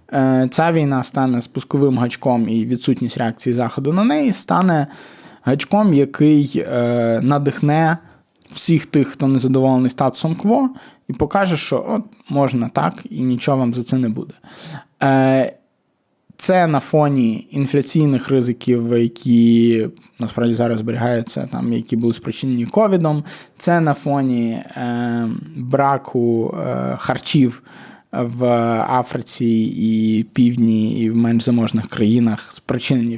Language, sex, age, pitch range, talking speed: Ukrainian, male, 20-39, 120-150 Hz, 125 wpm